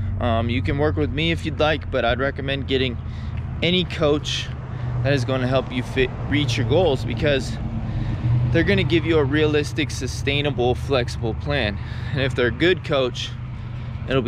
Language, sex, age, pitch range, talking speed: English, male, 20-39, 110-140 Hz, 175 wpm